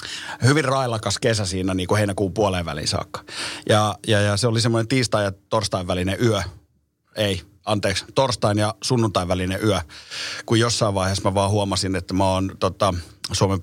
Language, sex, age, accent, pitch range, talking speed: Finnish, male, 30-49, native, 95-110 Hz, 170 wpm